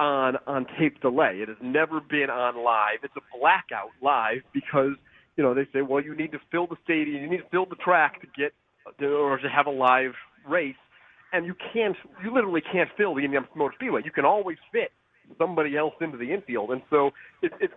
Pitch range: 135-180 Hz